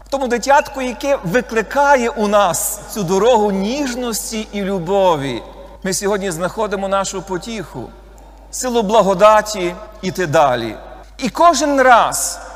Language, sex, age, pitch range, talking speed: Ukrainian, male, 40-59, 195-275 Hz, 115 wpm